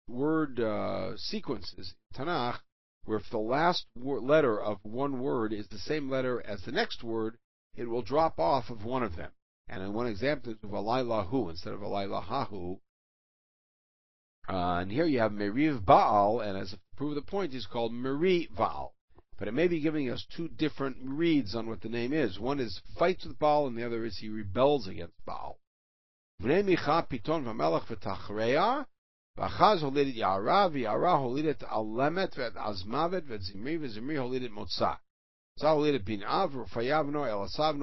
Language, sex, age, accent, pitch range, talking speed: English, male, 60-79, American, 100-145 Hz, 130 wpm